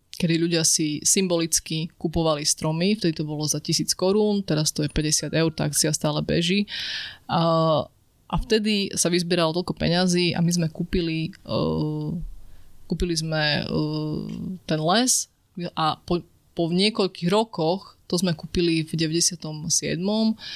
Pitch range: 155-185 Hz